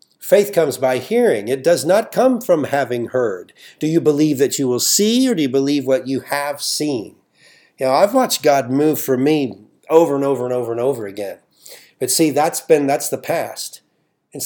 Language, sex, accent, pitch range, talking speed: English, male, American, 130-155 Hz, 210 wpm